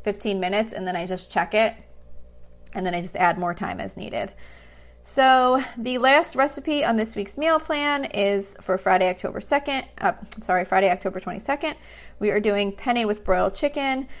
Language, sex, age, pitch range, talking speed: English, female, 30-49, 190-225 Hz, 180 wpm